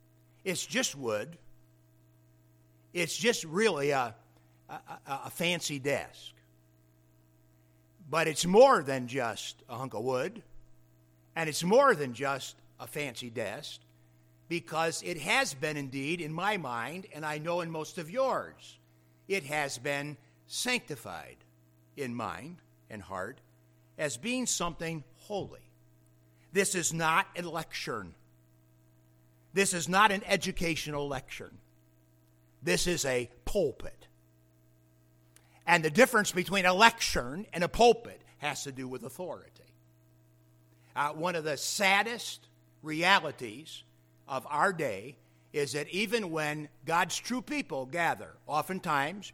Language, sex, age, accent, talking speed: English, male, 60-79, American, 125 wpm